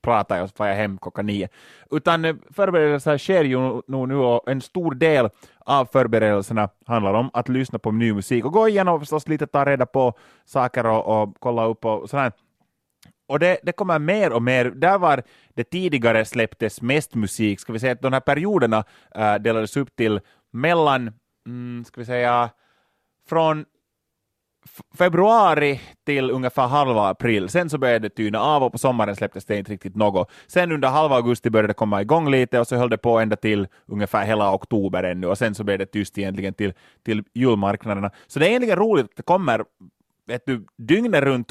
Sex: male